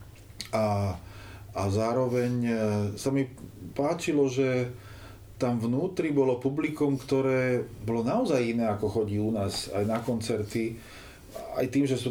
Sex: male